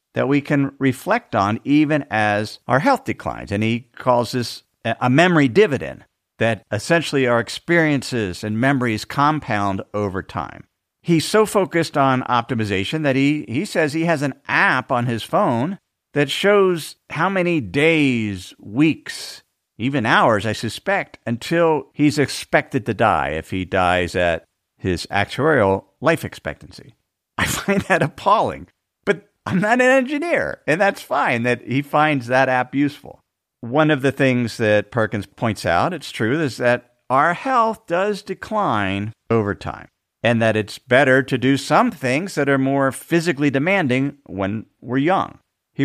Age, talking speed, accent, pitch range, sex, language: 50-69, 155 wpm, American, 115-165 Hz, male, English